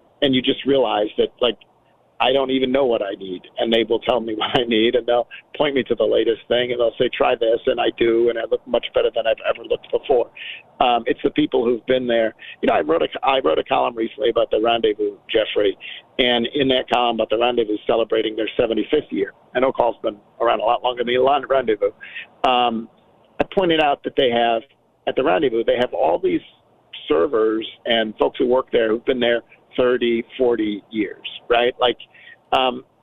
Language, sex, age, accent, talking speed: English, male, 50-69, American, 220 wpm